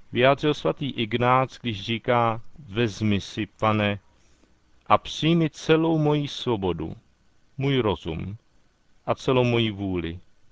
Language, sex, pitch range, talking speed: Czech, male, 100-130 Hz, 110 wpm